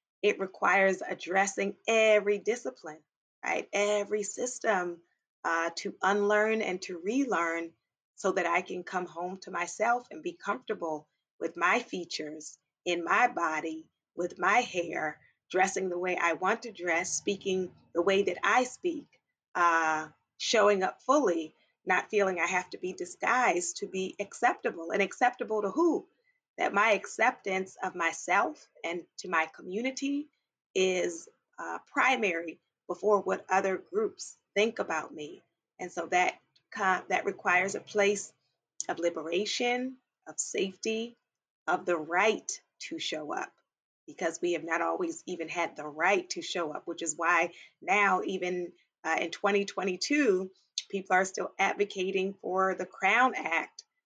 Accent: American